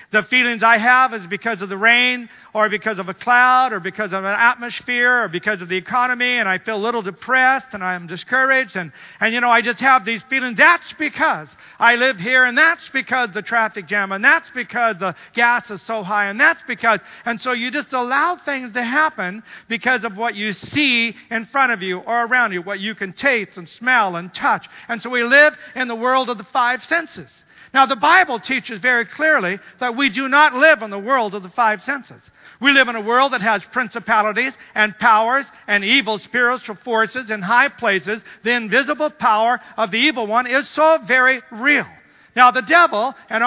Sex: male